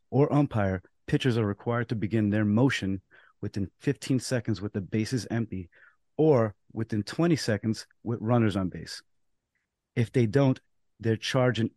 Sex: male